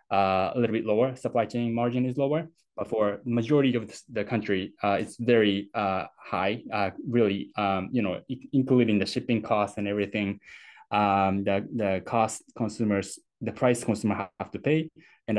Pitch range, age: 95-115 Hz, 10-29